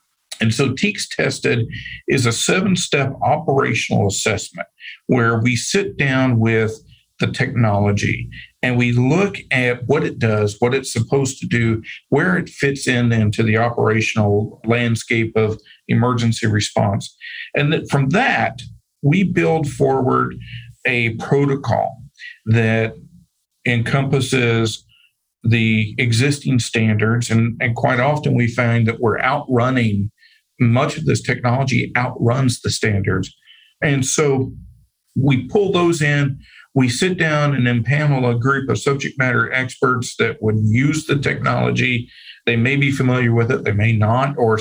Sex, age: male, 50-69